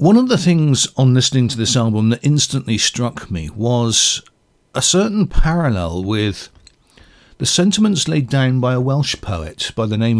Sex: male